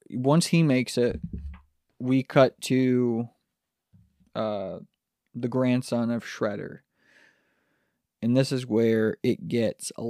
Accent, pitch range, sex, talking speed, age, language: American, 115-140 Hz, male, 115 wpm, 20-39, English